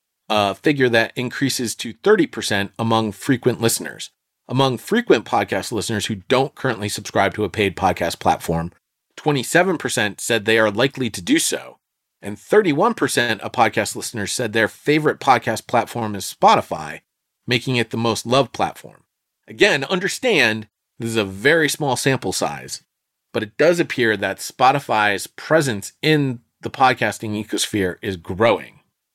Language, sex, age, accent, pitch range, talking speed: English, male, 30-49, American, 100-130 Hz, 145 wpm